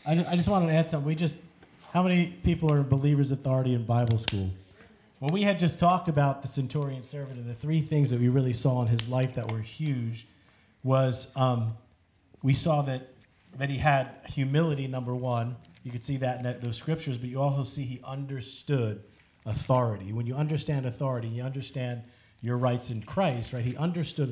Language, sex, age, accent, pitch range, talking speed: English, male, 40-59, American, 120-145 Hz, 195 wpm